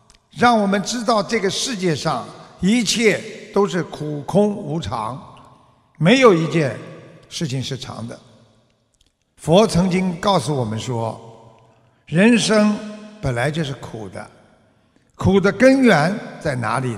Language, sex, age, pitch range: Chinese, male, 50-69, 130-210 Hz